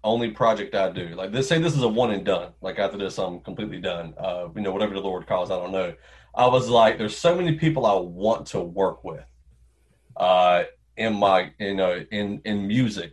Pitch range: 90-120 Hz